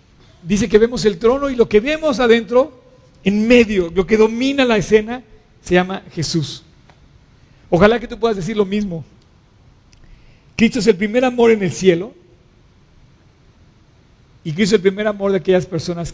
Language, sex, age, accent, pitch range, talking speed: Spanish, male, 50-69, Mexican, 165-210 Hz, 165 wpm